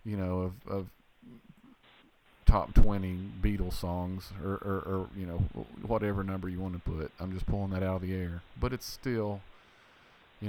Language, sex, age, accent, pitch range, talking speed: English, male, 40-59, American, 95-110 Hz, 175 wpm